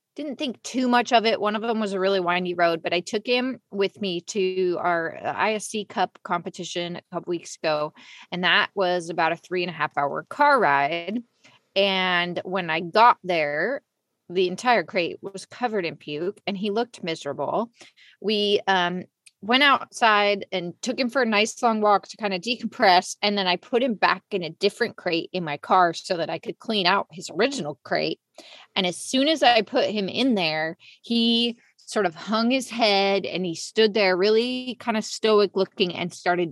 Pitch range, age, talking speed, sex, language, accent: 175-225 Hz, 20-39, 200 wpm, female, English, American